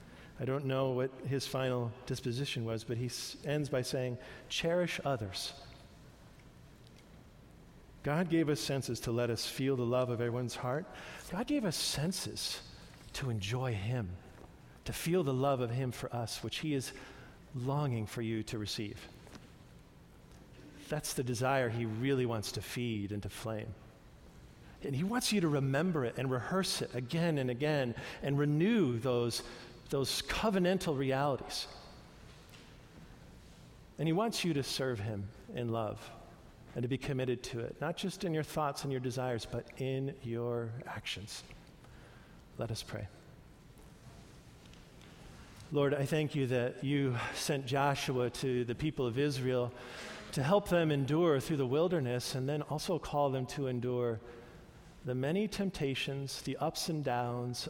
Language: English